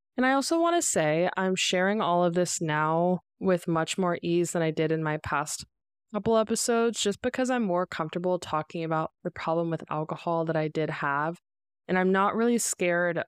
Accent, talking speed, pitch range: American, 200 wpm, 160-190 Hz